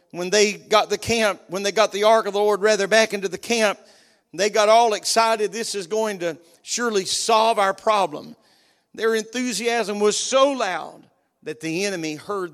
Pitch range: 185-220 Hz